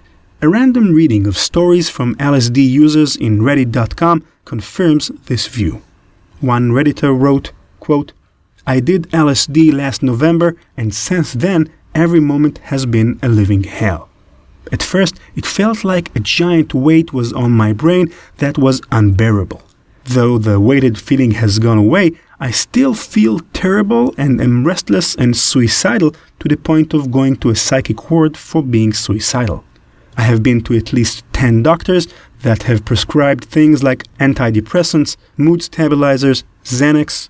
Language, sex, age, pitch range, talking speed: English, male, 30-49, 110-155 Hz, 150 wpm